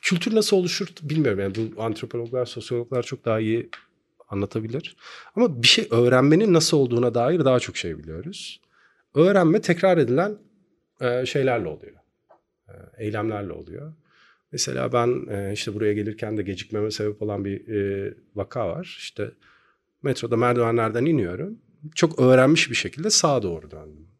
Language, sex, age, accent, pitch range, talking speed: Turkish, male, 40-59, native, 105-165 Hz, 130 wpm